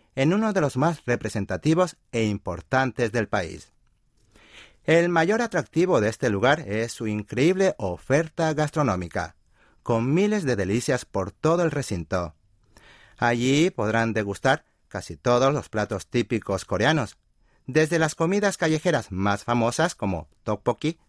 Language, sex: Spanish, male